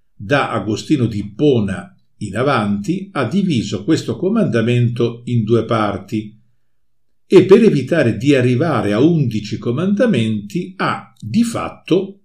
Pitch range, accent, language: 110-150 Hz, native, Italian